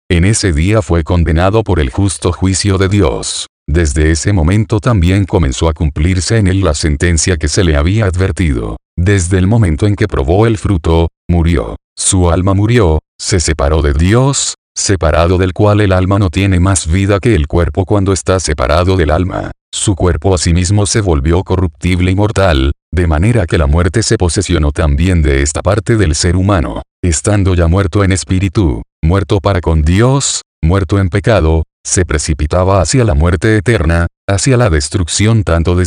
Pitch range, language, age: 80-105 Hz, Spanish, 40-59